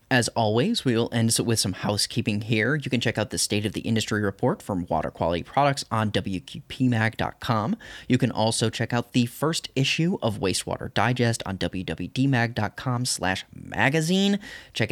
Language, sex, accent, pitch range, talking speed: English, male, American, 110-150 Hz, 160 wpm